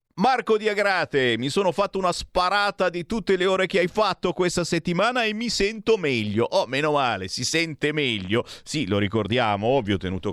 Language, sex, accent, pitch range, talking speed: Italian, male, native, 105-165 Hz, 185 wpm